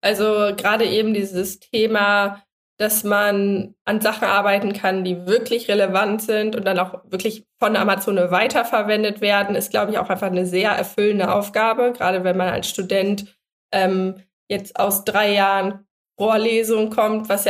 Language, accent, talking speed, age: German, German, 160 wpm, 20-39